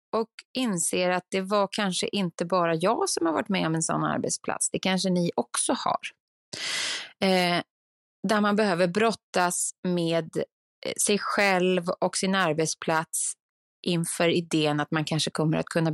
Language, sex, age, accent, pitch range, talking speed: Swedish, female, 20-39, native, 170-220 Hz, 150 wpm